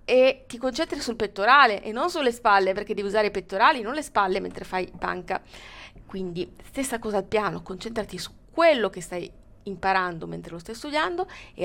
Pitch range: 185-260 Hz